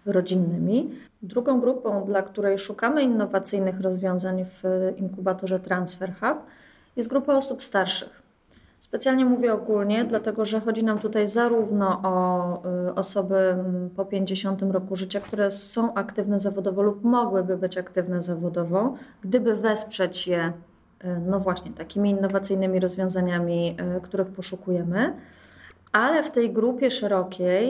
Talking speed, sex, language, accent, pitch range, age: 120 wpm, female, Polish, native, 185-220 Hz, 30-49